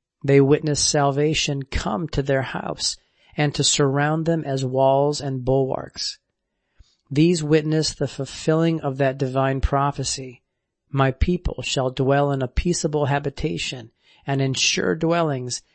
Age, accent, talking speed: 40-59, American, 135 wpm